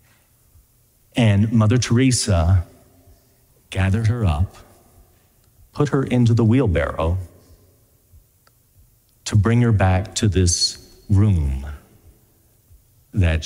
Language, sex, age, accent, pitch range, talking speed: English, male, 40-59, American, 95-115 Hz, 85 wpm